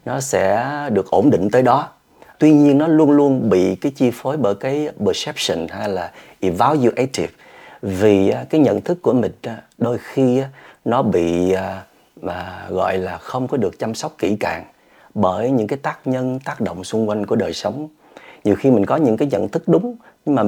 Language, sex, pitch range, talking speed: Vietnamese, male, 100-150 Hz, 190 wpm